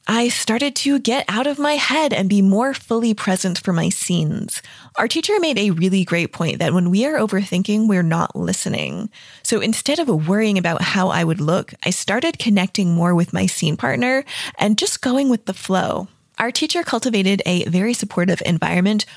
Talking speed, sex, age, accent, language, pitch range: 190 wpm, female, 20-39, American, English, 180-255 Hz